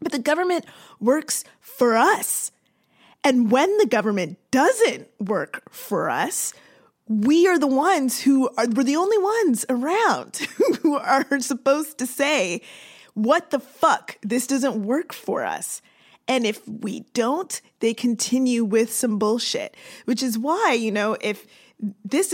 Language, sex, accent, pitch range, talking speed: English, female, American, 215-275 Hz, 150 wpm